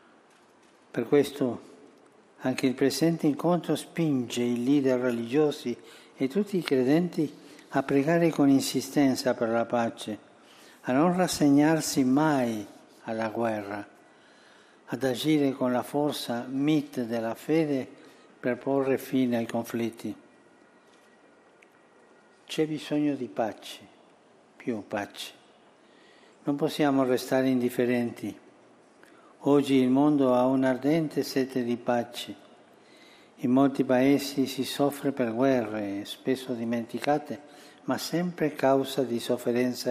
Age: 60-79